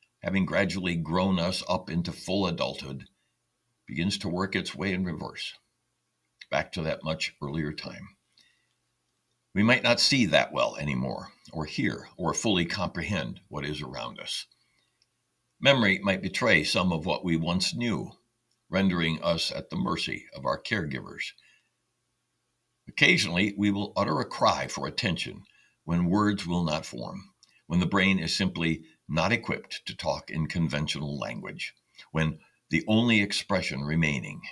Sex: male